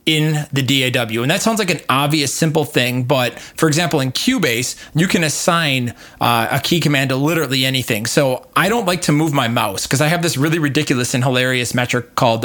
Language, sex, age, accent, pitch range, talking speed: English, male, 20-39, American, 130-155 Hz, 210 wpm